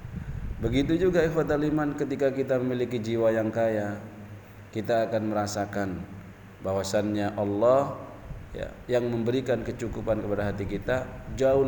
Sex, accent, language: male, native, Indonesian